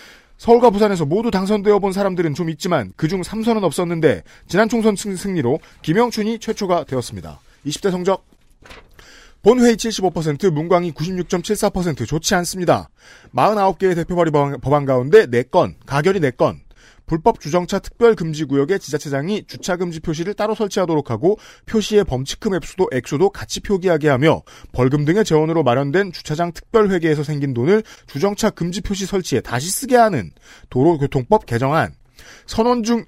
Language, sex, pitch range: Korean, male, 145-200 Hz